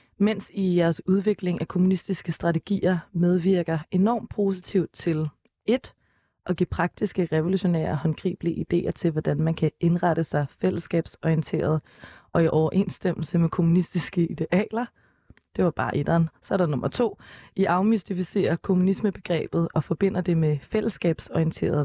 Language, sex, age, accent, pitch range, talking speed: Danish, female, 20-39, native, 160-190 Hz, 135 wpm